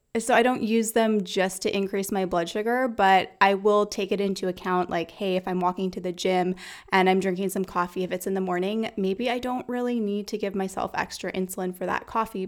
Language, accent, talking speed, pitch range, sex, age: English, American, 235 wpm, 190-225 Hz, female, 20-39